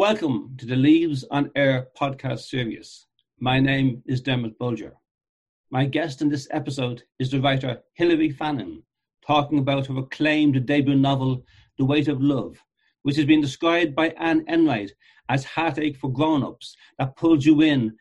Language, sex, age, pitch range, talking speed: English, male, 60-79, 130-150 Hz, 160 wpm